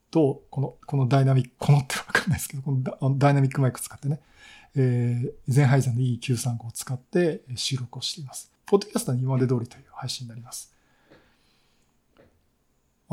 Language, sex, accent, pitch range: Japanese, male, native, 125-160 Hz